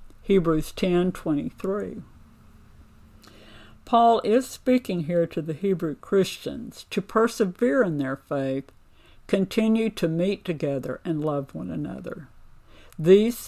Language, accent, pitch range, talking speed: English, American, 130-190 Hz, 105 wpm